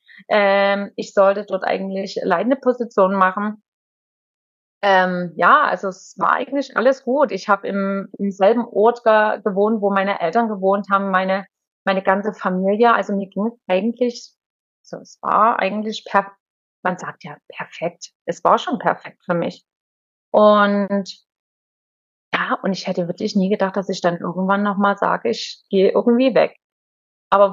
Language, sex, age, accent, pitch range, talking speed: German, female, 30-49, German, 190-220 Hz, 155 wpm